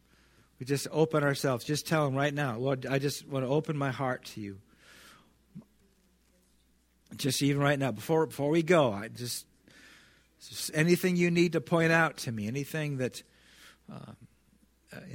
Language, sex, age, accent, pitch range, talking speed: English, male, 50-69, American, 100-140 Hz, 160 wpm